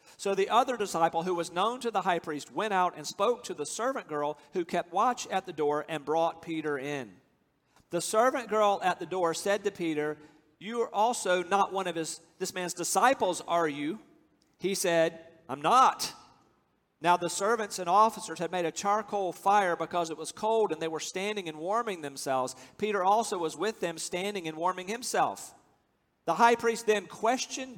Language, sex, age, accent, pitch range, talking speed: English, male, 50-69, American, 165-220 Hz, 190 wpm